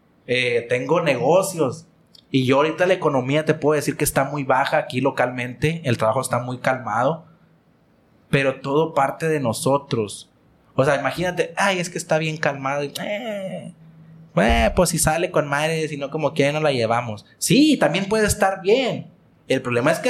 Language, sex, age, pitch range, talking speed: Spanish, male, 30-49, 125-160 Hz, 175 wpm